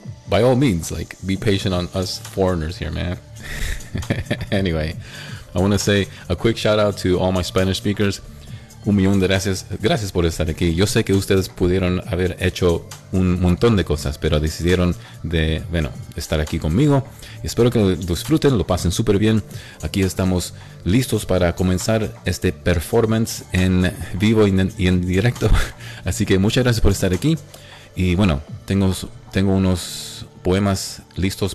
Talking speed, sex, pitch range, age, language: 165 wpm, male, 90-110 Hz, 30-49, English